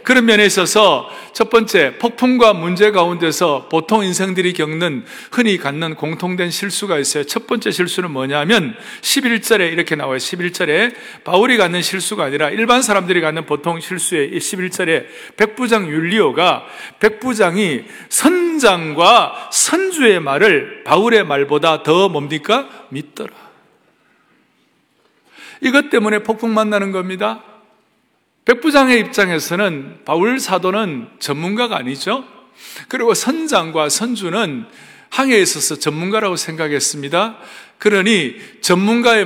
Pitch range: 165-225 Hz